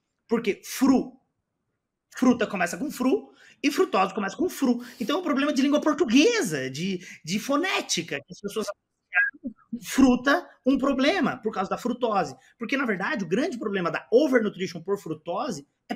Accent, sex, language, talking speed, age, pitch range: Brazilian, male, Portuguese, 160 wpm, 30-49, 170-245 Hz